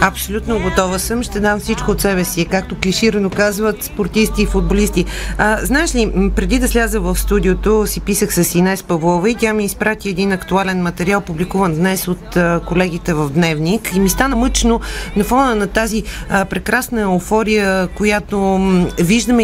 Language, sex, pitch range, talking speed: Bulgarian, female, 185-225 Hz, 165 wpm